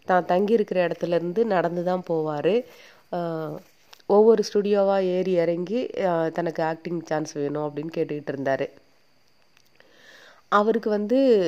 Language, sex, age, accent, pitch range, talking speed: Tamil, female, 30-49, native, 165-205 Hz, 100 wpm